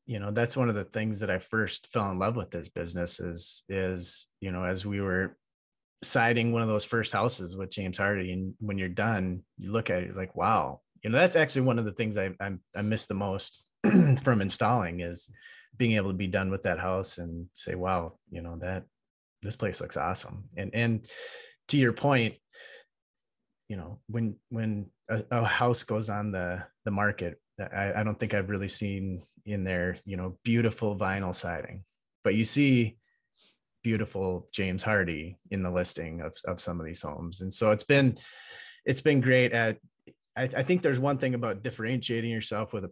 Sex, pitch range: male, 95-115 Hz